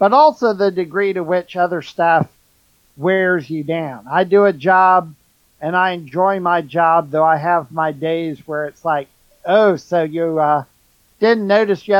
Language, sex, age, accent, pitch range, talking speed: English, male, 50-69, American, 155-190 Hz, 175 wpm